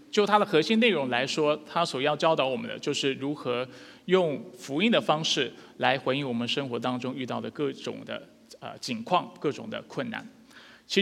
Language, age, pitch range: Chinese, 20-39, 135-195 Hz